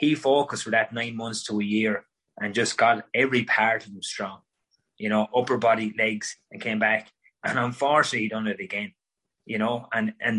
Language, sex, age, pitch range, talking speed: English, male, 20-39, 110-135 Hz, 200 wpm